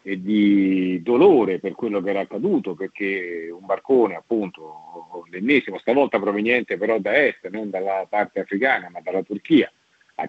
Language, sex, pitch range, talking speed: Italian, male, 90-120 Hz, 150 wpm